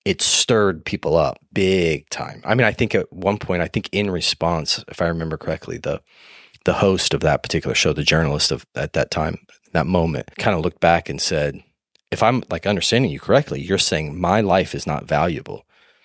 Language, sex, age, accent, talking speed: English, male, 30-49, American, 205 wpm